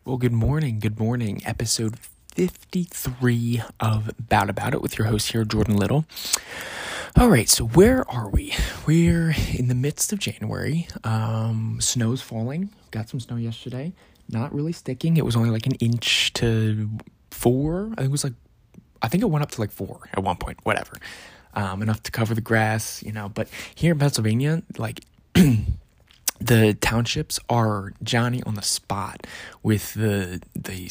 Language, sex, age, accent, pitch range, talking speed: English, male, 20-39, American, 105-130 Hz, 170 wpm